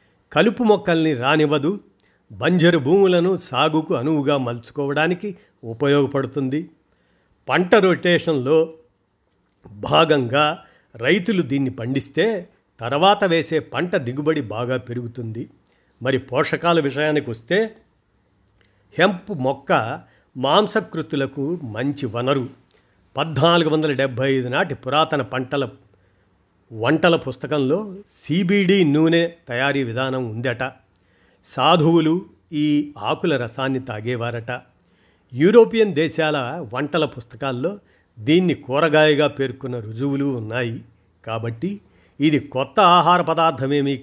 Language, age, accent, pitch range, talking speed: Telugu, 50-69, native, 125-165 Hz, 80 wpm